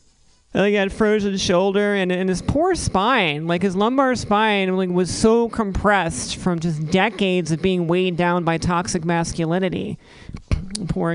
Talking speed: 155 wpm